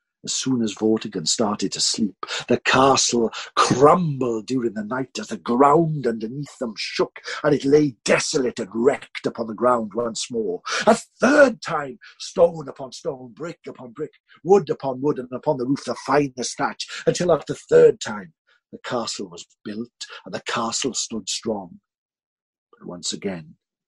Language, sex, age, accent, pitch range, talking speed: English, male, 60-79, British, 110-145 Hz, 170 wpm